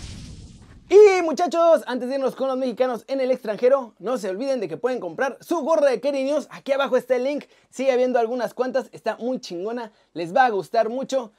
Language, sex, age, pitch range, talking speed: Spanish, male, 30-49, 210-280 Hz, 210 wpm